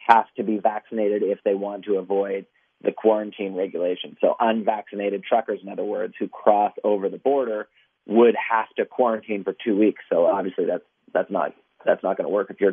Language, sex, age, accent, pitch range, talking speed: English, male, 30-49, American, 100-120 Hz, 200 wpm